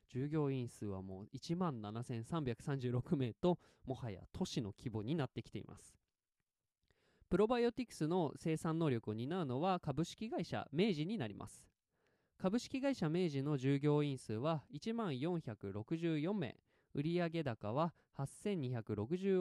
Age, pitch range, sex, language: 20-39, 125-175 Hz, male, Japanese